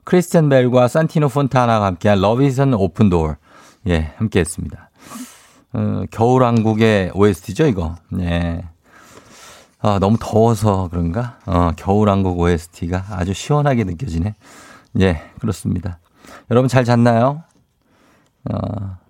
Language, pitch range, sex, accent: Korean, 90-130 Hz, male, native